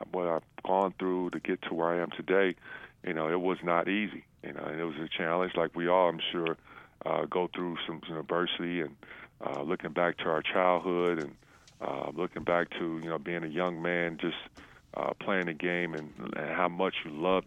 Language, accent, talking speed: English, American, 215 wpm